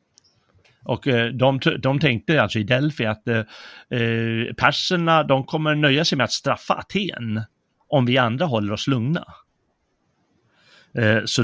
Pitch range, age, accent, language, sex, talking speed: 110-135 Hz, 30-49, native, Swedish, male, 125 wpm